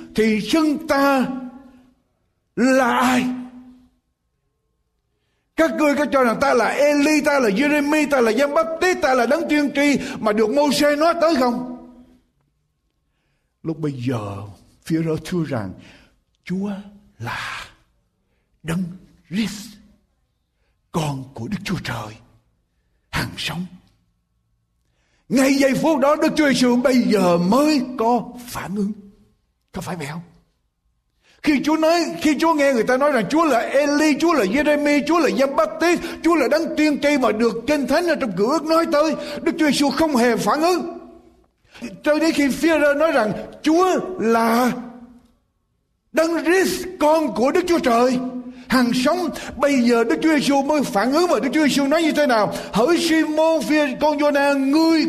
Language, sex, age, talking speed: Vietnamese, male, 60-79, 160 wpm